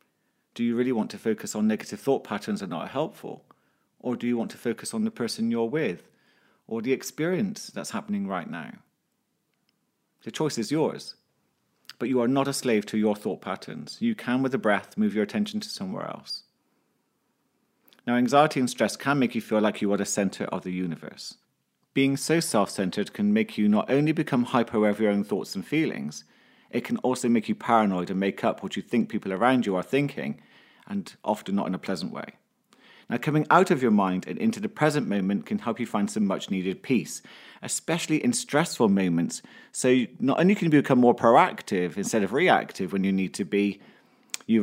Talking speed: 205 wpm